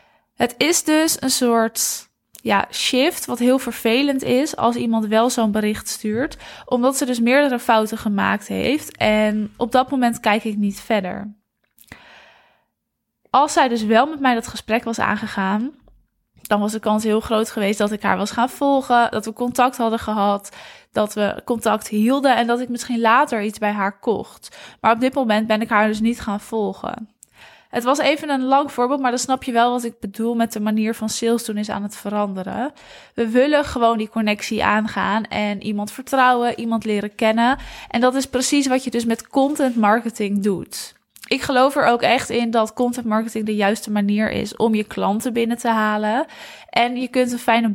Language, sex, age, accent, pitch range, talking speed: Dutch, female, 20-39, Dutch, 215-250 Hz, 195 wpm